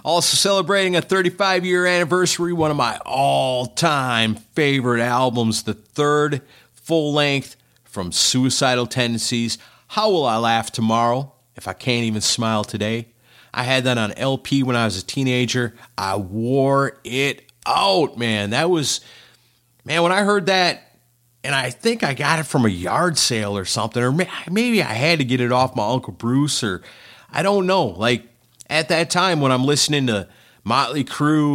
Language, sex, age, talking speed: English, male, 40-59, 165 wpm